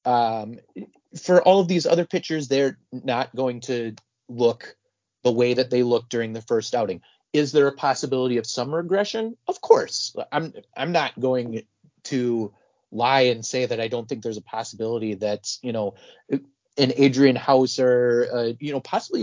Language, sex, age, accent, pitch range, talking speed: English, male, 30-49, American, 120-155 Hz, 175 wpm